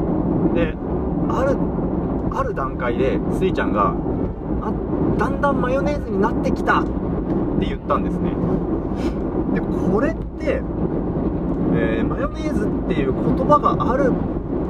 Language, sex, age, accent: Japanese, male, 30-49, native